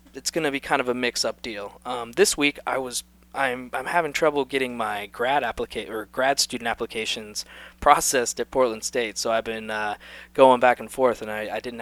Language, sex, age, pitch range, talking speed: English, male, 20-39, 105-135 Hz, 215 wpm